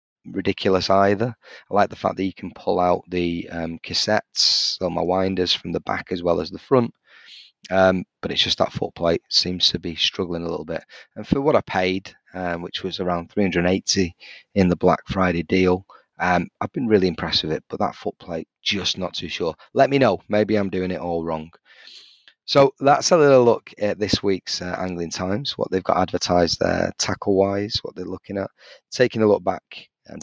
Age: 30-49